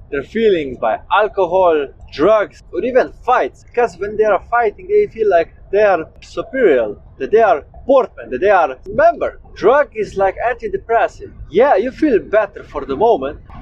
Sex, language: male, English